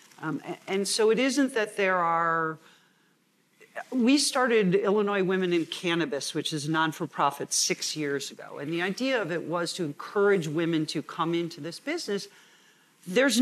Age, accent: 50-69, American